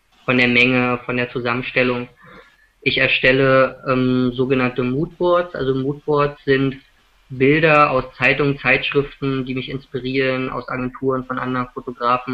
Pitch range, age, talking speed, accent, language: 125-145 Hz, 20-39, 125 wpm, German, English